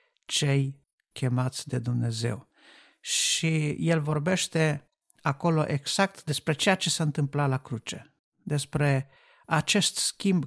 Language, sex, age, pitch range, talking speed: Romanian, male, 50-69, 135-160 Hz, 110 wpm